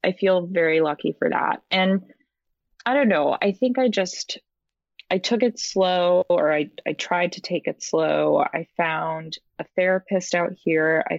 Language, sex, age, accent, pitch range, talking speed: English, female, 20-39, American, 160-200 Hz, 175 wpm